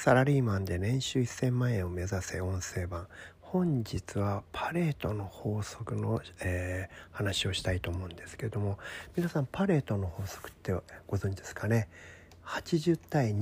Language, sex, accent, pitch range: Japanese, male, native, 95-145 Hz